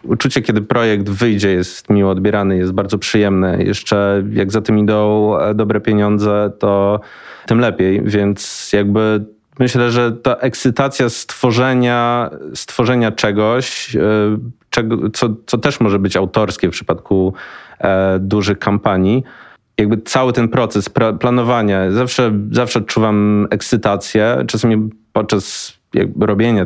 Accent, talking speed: native, 115 wpm